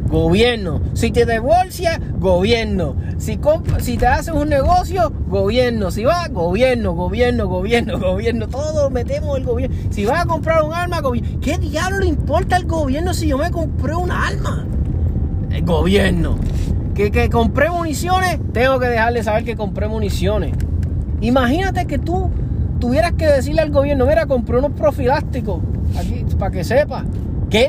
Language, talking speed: Spanish, 160 wpm